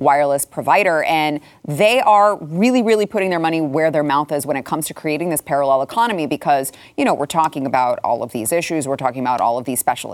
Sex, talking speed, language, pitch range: female, 230 wpm, English, 145-185 Hz